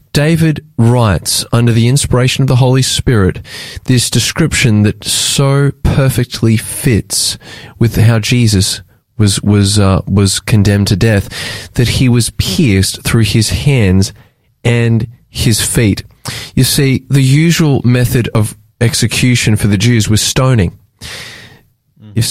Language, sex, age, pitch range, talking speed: English, male, 20-39, 105-130 Hz, 130 wpm